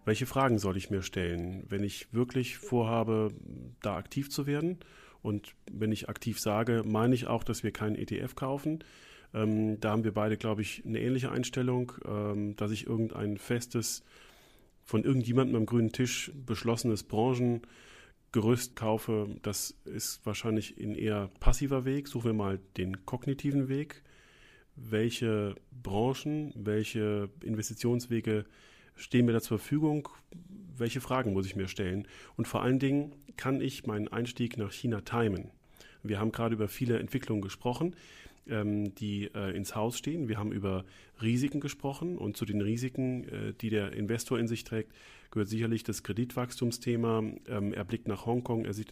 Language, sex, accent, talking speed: German, male, German, 160 wpm